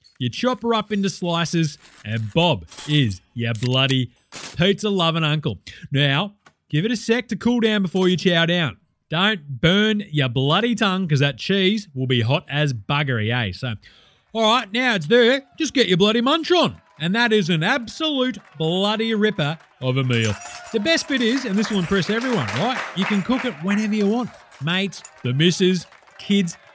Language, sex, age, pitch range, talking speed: English, male, 30-49, 140-215 Hz, 185 wpm